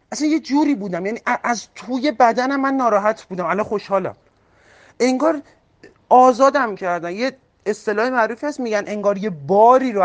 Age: 40-59